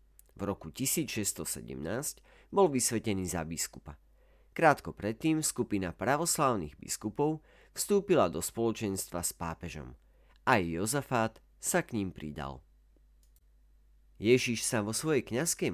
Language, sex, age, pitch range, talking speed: Slovak, male, 40-59, 80-115 Hz, 105 wpm